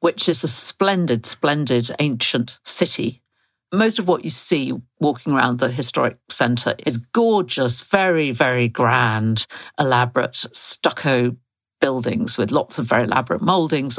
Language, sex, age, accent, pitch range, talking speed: English, female, 50-69, British, 125-160 Hz, 135 wpm